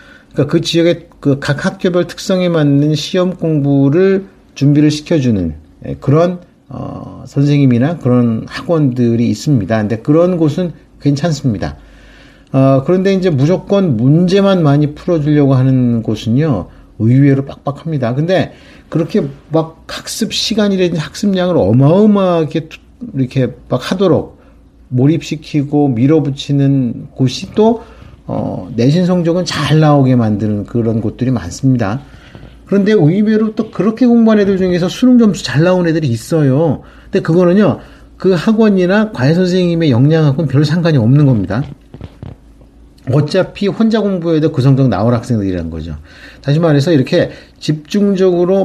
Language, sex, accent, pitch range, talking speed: English, male, Korean, 130-180 Hz, 110 wpm